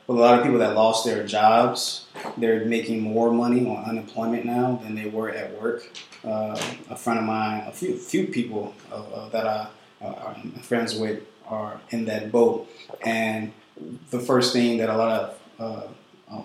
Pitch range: 110-125 Hz